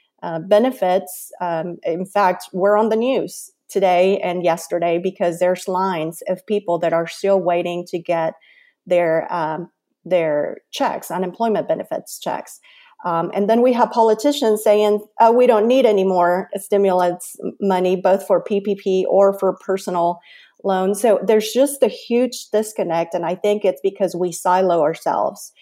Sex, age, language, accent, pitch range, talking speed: female, 40-59, English, American, 180-215 Hz, 150 wpm